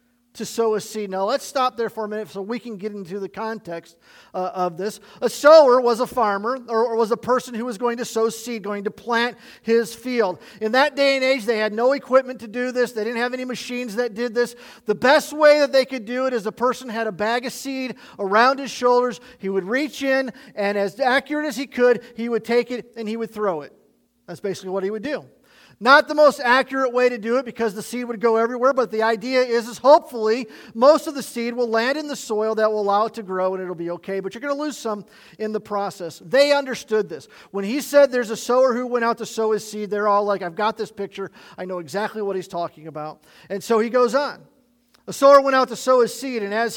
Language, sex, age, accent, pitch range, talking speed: English, male, 40-59, American, 210-255 Hz, 255 wpm